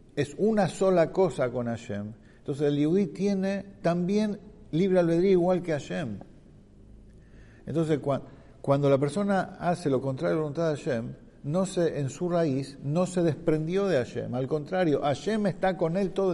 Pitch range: 130-175 Hz